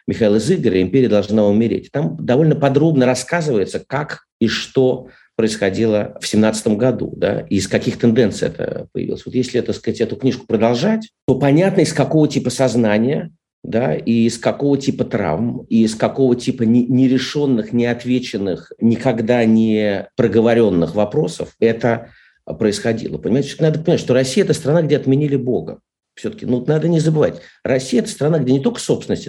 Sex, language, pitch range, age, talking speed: male, Russian, 115-150 Hz, 50-69, 155 wpm